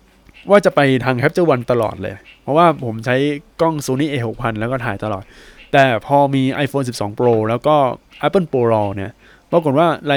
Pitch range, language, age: 110-140 Hz, Thai, 20-39